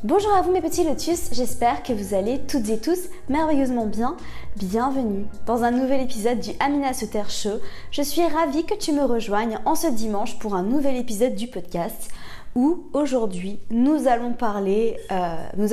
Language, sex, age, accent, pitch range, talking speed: French, female, 20-39, French, 215-270 Hz, 180 wpm